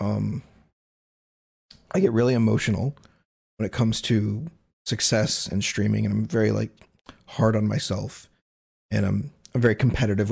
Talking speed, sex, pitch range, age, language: 140 wpm, male, 105-125 Hz, 30-49, English